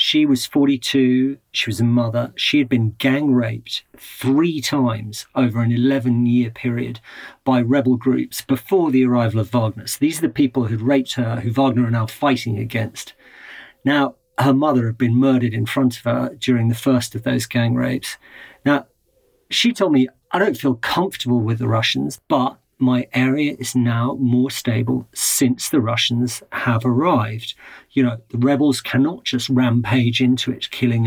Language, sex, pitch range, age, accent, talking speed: English, male, 120-135 Hz, 40-59, British, 175 wpm